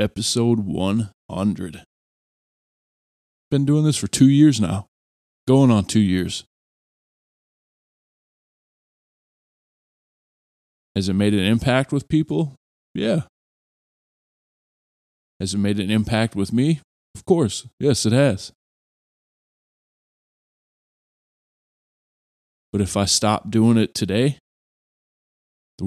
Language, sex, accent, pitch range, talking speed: English, male, American, 85-110 Hz, 95 wpm